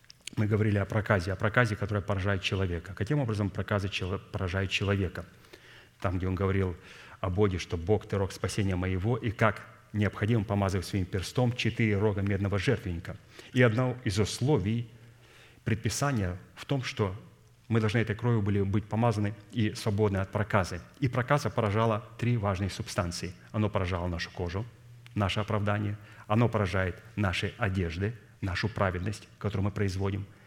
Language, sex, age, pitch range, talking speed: Russian, male, 30-49, 100-115 Hz, 150 wpm